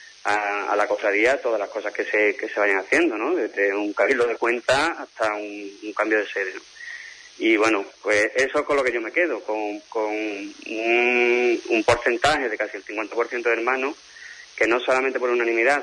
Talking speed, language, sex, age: 200 wpm, Spanish, male, 30-49